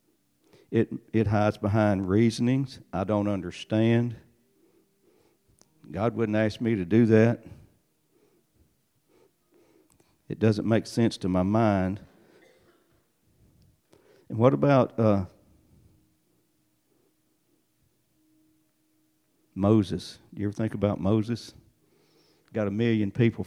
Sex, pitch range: male, 105-115 Hz